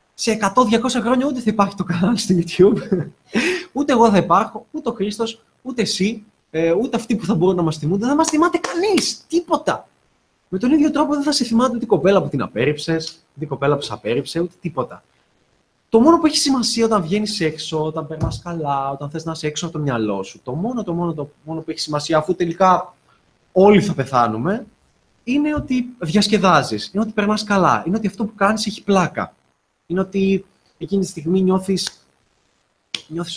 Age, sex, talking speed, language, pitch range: 20-39, male, 200 wpm, Greek, 150-210 Hz